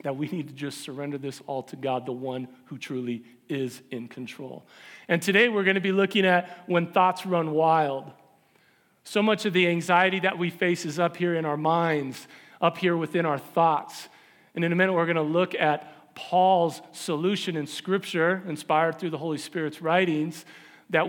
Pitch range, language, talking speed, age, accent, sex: 145-175 Hz, English, 190 wpm, 40-59, American, male